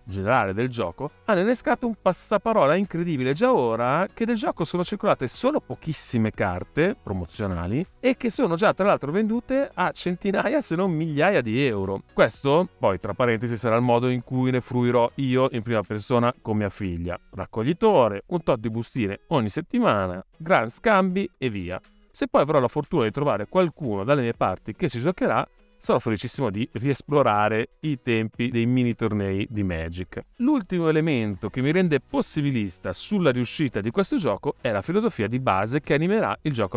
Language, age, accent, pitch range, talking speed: Italian, 30-49, native, 110-185 Hz, 175 wpm